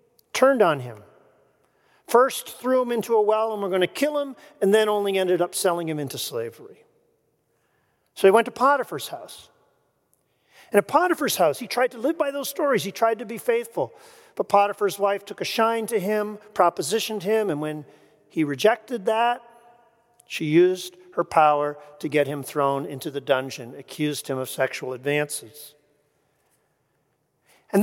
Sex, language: male, English